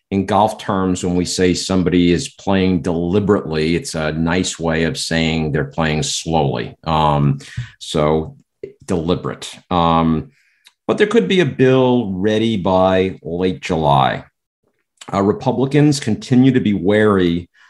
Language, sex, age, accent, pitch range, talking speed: English, male, 50-69, American, 80-100 Hz, 130 wpm